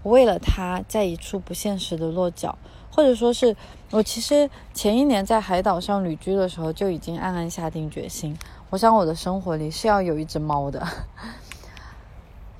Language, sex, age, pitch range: Chinese, female, 20-39, 165-215 Hz